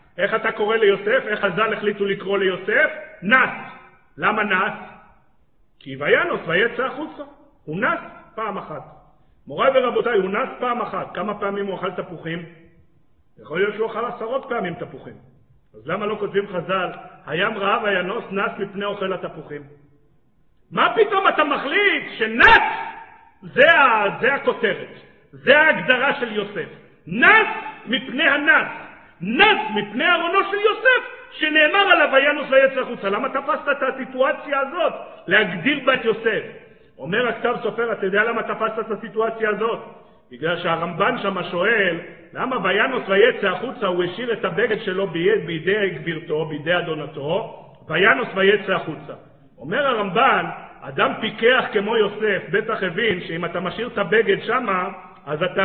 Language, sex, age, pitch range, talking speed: Hebrew, male, 50-69, 185-265 Hz, 140 wpm